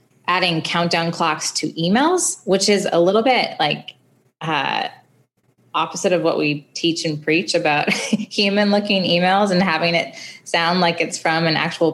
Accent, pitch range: American, 145-175 Hz